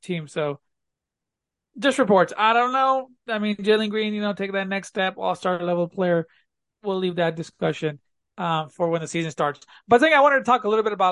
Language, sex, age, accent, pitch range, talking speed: English, male, 20-39, American, 175-210 Hz, 225 wpm